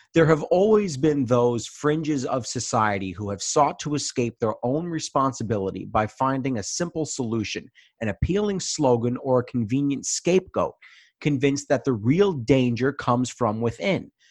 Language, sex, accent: English, male, American